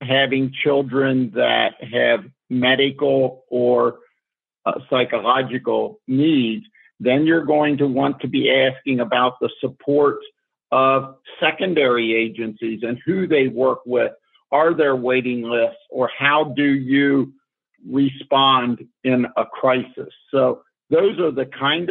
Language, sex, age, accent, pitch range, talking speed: English, male, 50-69, American, 130-155 Hz, 125 wpm